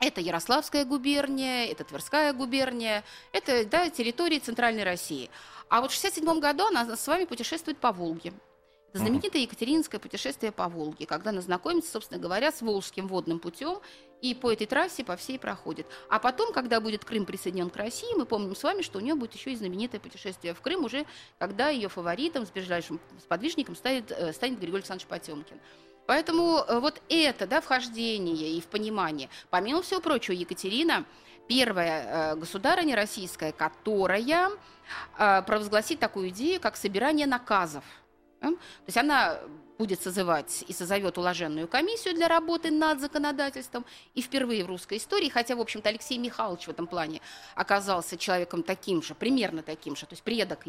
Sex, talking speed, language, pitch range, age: female, 160 wpm, Russian, 180-290 Hz, 30-49